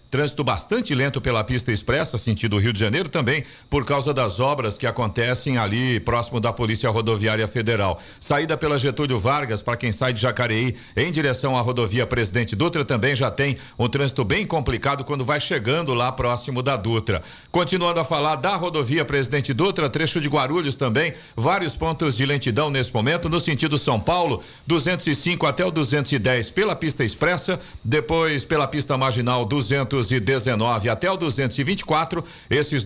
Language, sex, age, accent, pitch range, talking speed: Portuguese, male, 50-69, Brazilian, 125-160 Hz, 165 wpm